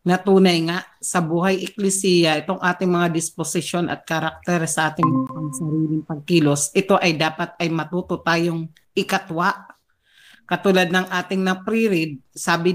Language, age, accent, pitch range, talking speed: Filipino, 40-59, native, 165-195 Hz, 125 wpm